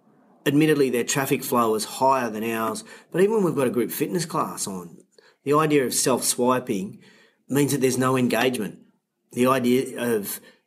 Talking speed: 170 wpm